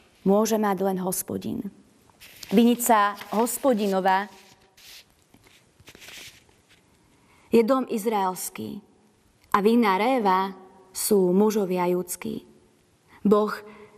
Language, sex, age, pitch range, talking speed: Slovak, female, 30-49, 195-230 Hz, 70 wpm